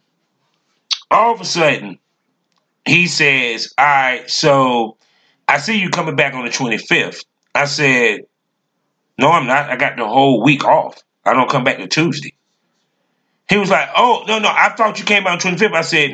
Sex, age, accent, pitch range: male, 40-59, American, 130-180 Hz